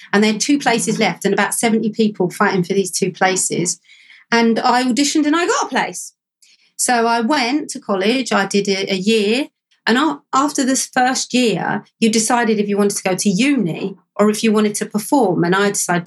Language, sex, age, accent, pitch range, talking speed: English, female, 40-59, British, 195-250 Hz, 205 wpm